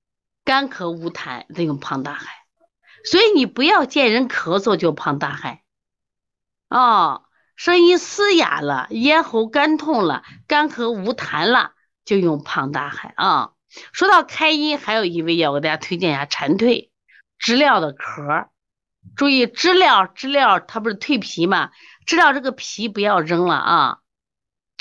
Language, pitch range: Chinese, 170-280 Hz